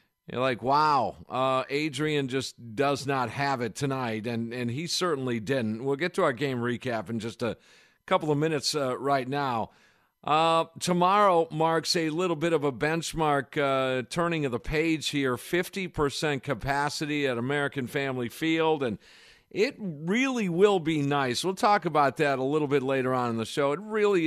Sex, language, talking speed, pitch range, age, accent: male, English, 180 wpm, 125-155 Hz, 50-69, American